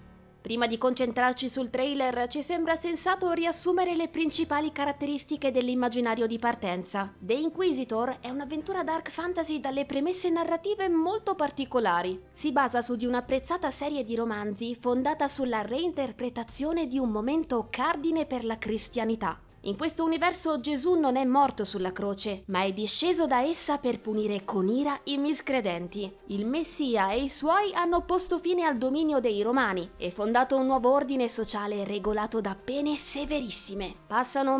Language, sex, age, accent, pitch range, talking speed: Italian, female, 20-39, native, 210-295 Hz, 150 wpm